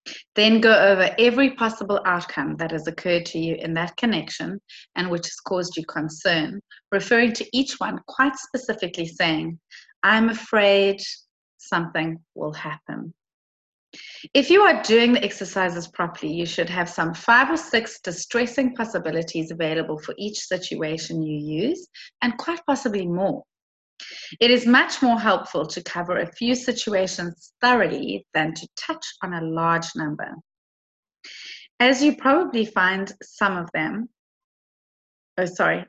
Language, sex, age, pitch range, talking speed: English, female, 30-49, 165-235 Hz, 140 wpm